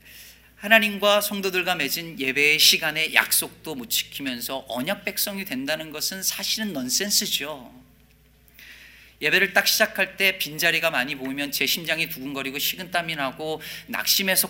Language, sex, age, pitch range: Korean, male, 40-59, 130-200 Hz